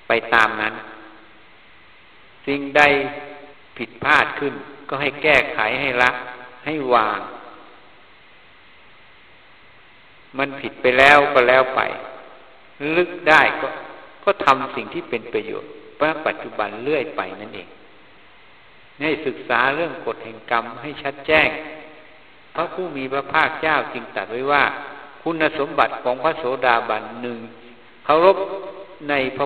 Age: 60-79